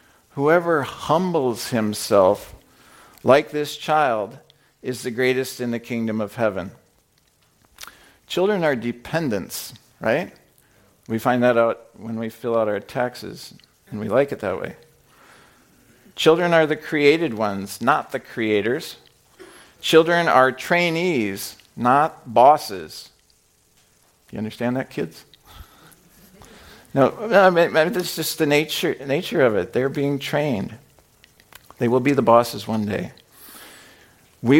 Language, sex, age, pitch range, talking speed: English, male, 50-69, 115-150 Hz, 125 wpm